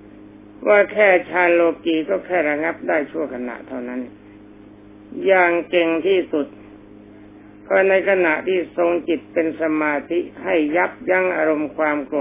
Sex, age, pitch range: male, 60-79, 105-170 Hz